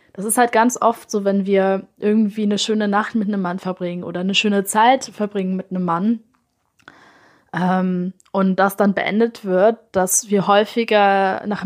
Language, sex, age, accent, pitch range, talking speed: German, female, 20-39, German, 190-220 Hz, 175 wpm